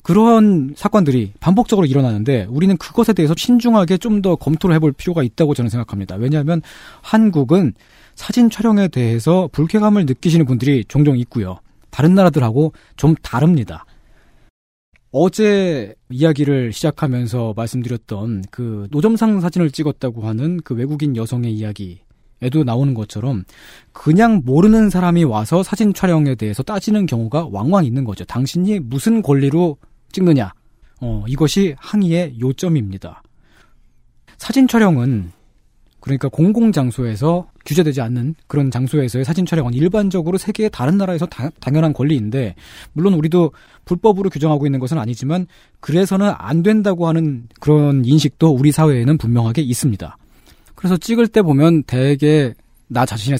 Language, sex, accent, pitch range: Korean, male, native, 125-180 Hz